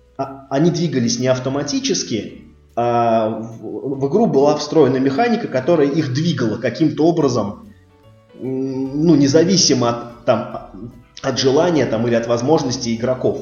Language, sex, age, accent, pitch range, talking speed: Russian, male, 20-39, native, 115-155 Hz, 120 wpm